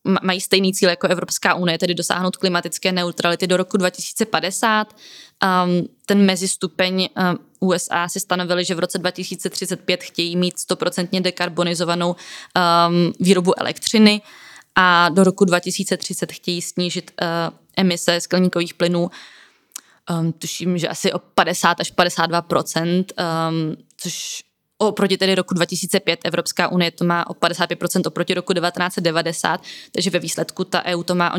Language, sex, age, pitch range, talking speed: Czech, female, 20-39, 175-190 Hz, 125 wpm